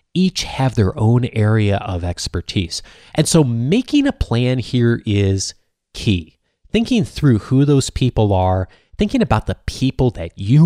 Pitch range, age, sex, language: 95-135 Hz, 30-49, male, English